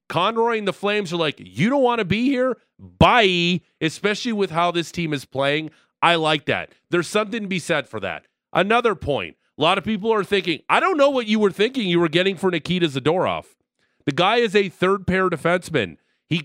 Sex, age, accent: male, 30-49, American